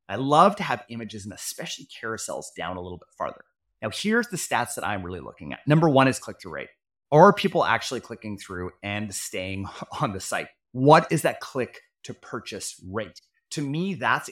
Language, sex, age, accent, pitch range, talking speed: English, male, 30-49, American, 115-175 Hz, 190 wpm